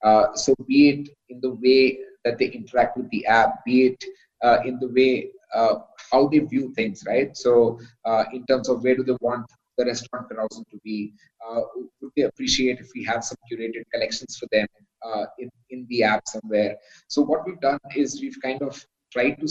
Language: English